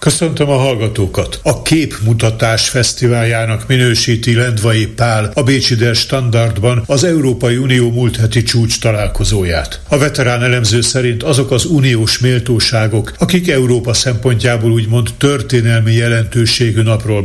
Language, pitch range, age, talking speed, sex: Hungarian, 115-135 Hz, 60-79, 120 wpm, male